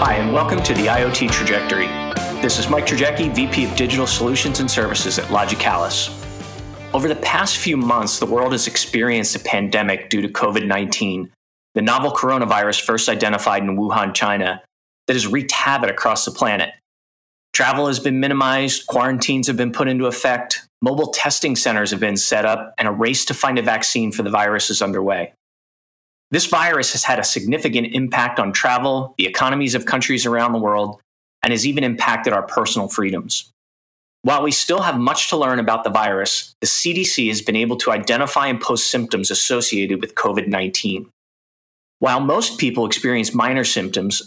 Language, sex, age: English, male, 30-49